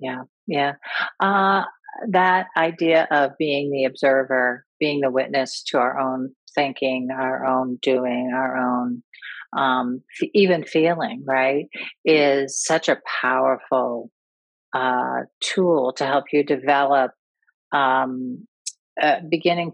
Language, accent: English, American